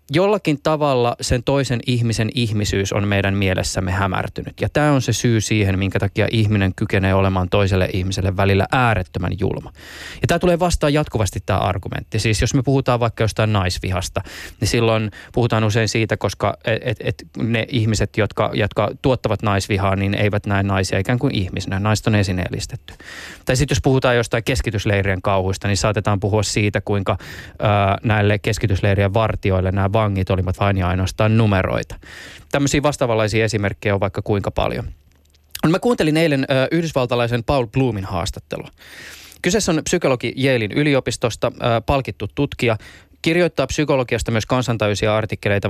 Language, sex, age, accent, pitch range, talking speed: Finnish, male, 20-39, native, 100-125 Hz, 150 wpm